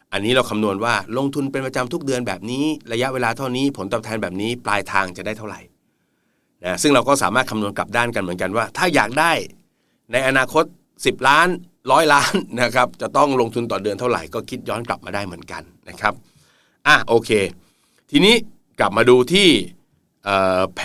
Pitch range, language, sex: 95-125 Hz, Thai, male